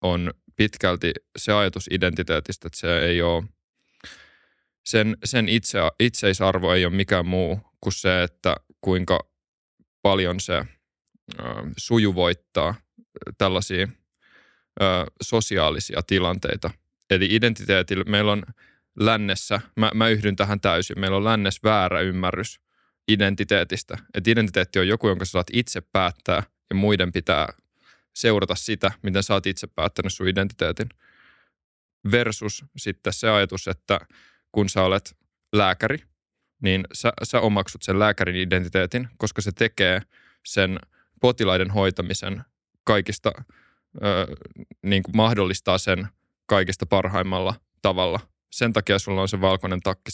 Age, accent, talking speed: 20-39, native, 120 wpm